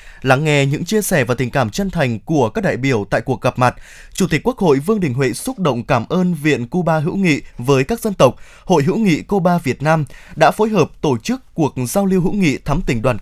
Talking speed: 255 wpm